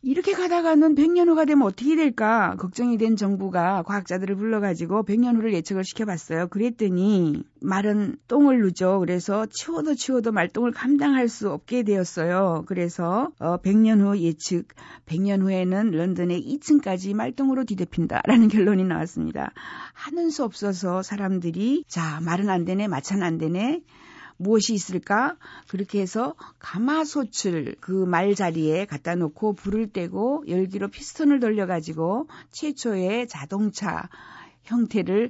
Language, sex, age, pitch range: Korean, female, 50-69, 180-245 Hz